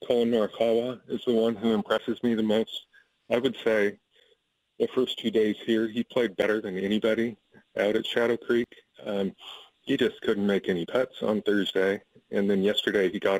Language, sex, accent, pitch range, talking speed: English, male, American, 100-115 Hz, 185 wpm